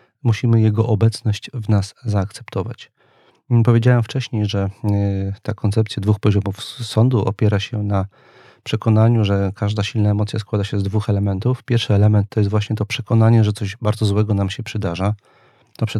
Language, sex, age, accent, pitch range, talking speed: Polish, male, 40-59, native, 105-120 Hz, 160 wpm